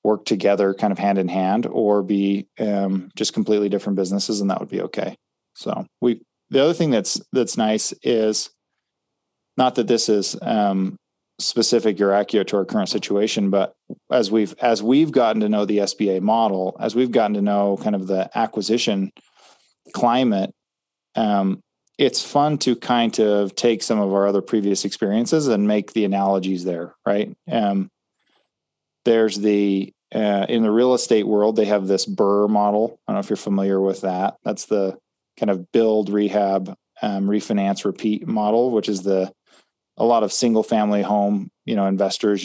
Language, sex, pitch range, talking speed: English, male, 100-110 Hz, 175 wpm